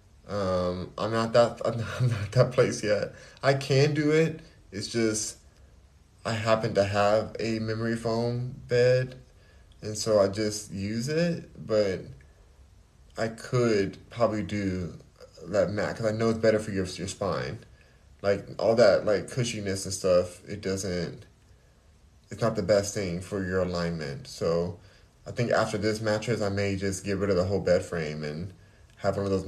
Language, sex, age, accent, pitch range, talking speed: English, male, 20-39, American, 95-115 Hz, 170 wpm